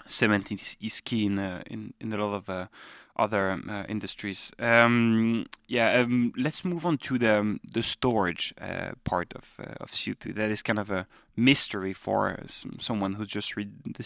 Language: English